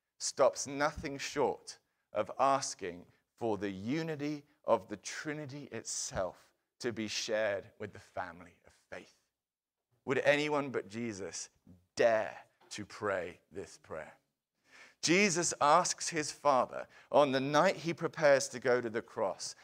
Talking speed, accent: 130 wpm, British